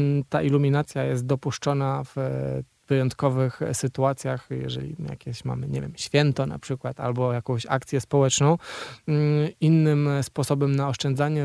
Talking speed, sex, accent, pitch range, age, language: 120 wpm, male, native, 135-150 Hz, 20-39, Polish